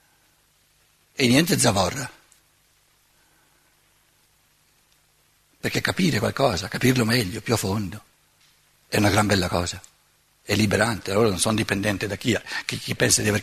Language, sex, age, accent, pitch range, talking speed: Italian, male, 60-79, native, 115-150 Hz, 125 wpm